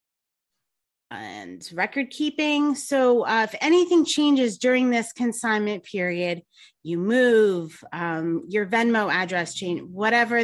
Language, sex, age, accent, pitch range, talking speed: English, female, 30-49, American, 195-270 Hz, 115 wpm